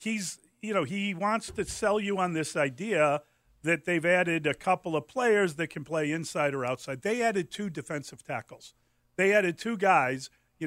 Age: 50-69